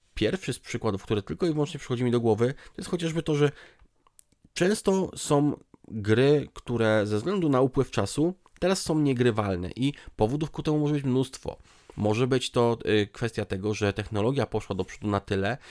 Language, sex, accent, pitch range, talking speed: Polish, male, native, 105-130 Hz, 180 wpm